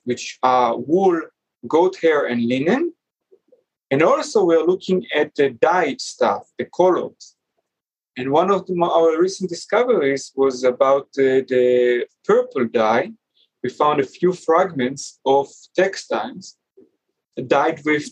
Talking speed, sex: 125 wpm, male